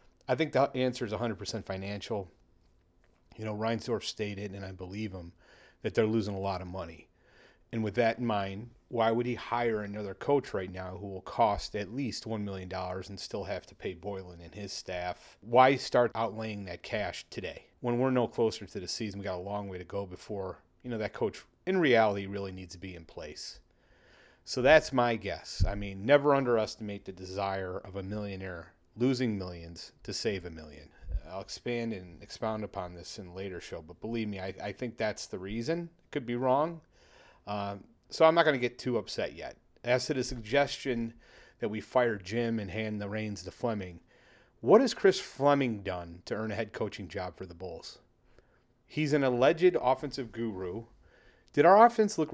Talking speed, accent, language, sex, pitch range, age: 200 wpm, American, English, male, 95-125 Hz, 30-49